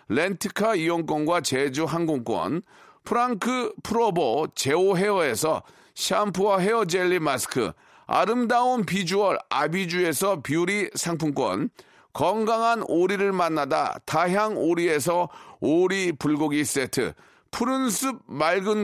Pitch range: 165-225 Hz